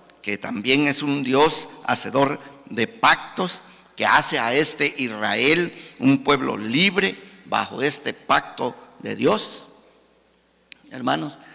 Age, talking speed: 50-69, 115 wpm